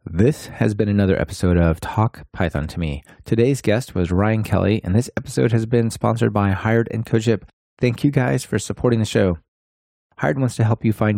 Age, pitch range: 30-49, 90-115 Hz